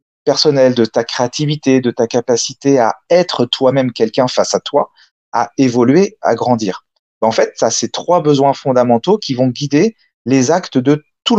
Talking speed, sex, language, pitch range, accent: 170 wpm, male, French, 120-165 Hz, French